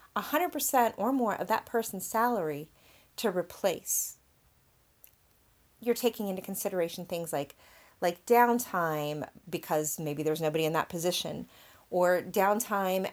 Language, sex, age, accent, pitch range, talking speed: English, female, 30-49, American, 165-210 Hz, 115 wpm